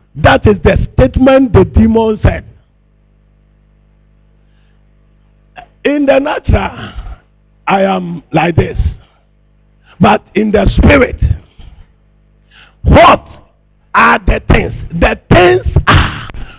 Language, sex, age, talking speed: English, male, 50-69, 90 wpm